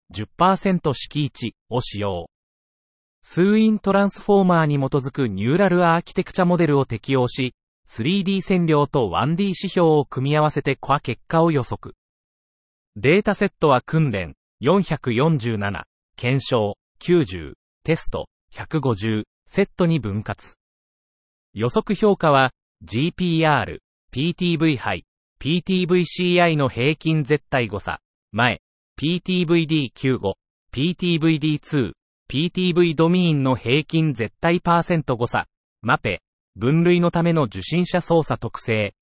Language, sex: Japanese, male